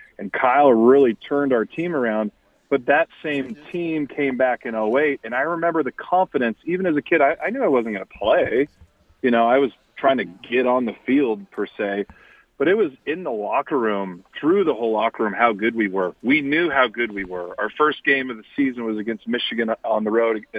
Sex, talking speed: male, 225 wpm